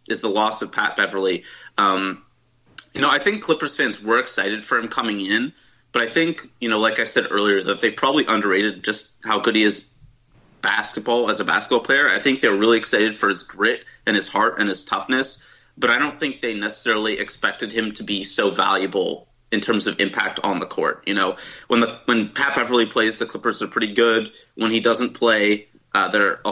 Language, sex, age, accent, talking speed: English, male, 30-49, American, 215 wpm